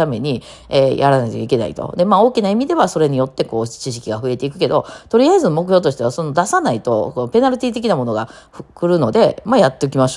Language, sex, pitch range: Japanese, female, 125-210 Hz